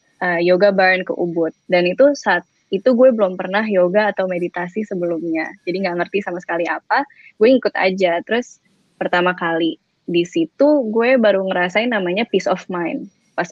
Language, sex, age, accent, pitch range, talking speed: Indonesian, female, 20-39, native, 175-210 Hz, 165 wpm